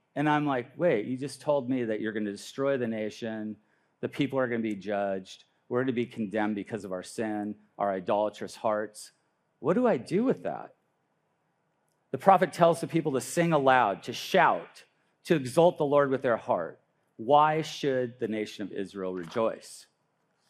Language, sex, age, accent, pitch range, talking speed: English, male, 40-59, American, 115-175 Hz, 185 wpm